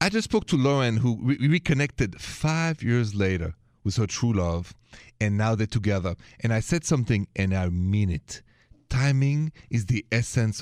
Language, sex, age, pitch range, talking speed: English, male, 30-49, 100-125 Hz, 175 wpm